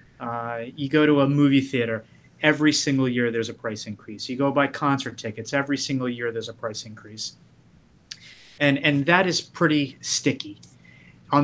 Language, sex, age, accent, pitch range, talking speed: English, male, 30-49, American, 120-140 Hz, 175 wpm